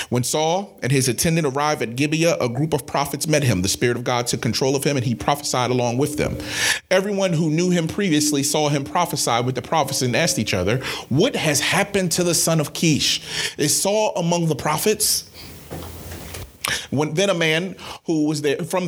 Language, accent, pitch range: English, American, 125-165 Hz